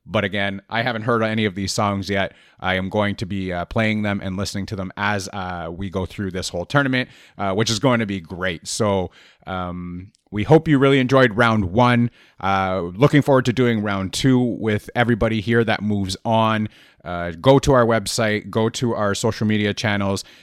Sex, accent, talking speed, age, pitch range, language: male, American, 205 wpm, 30-49, 100-125 Hz, English